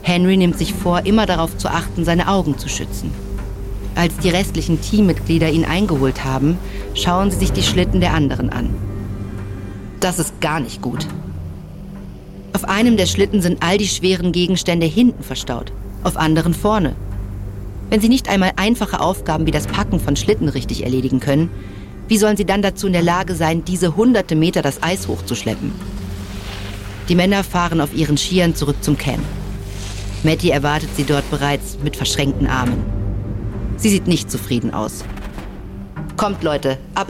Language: German